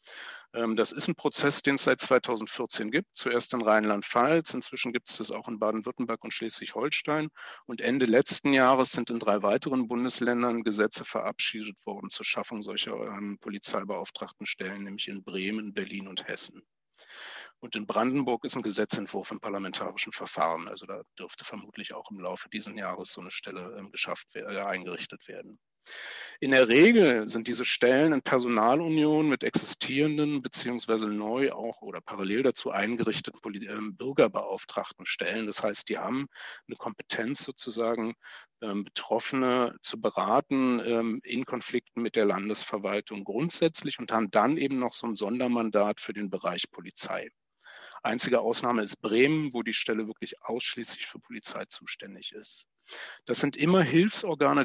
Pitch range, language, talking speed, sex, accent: 110-140 Hz, German, 145 wpm, male, German